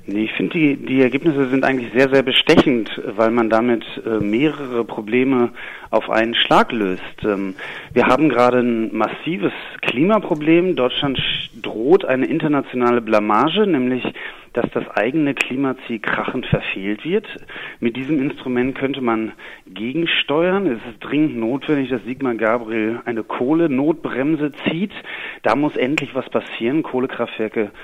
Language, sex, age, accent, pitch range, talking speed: German, male, 40-59, German, 115-165 Hz, 130 wpm